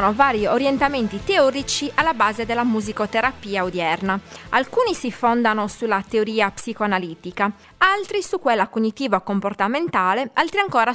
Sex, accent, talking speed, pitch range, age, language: female, native, 115 wpm, 190-270 Hz, 20-39, Italian